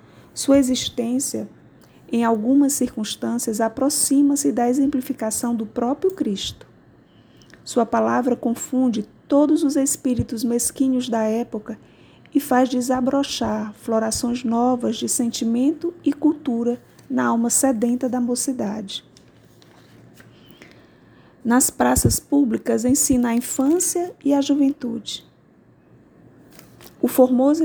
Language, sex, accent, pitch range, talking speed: Portuguese, female, Brazilian, 230-265 Hz, 100 wpm